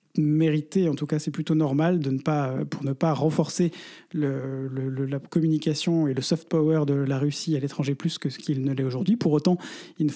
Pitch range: 145-165 Hz